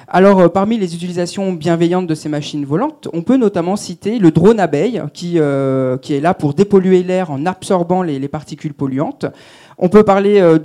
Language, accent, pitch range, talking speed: French, French, 145-185 Hz, 195 wpm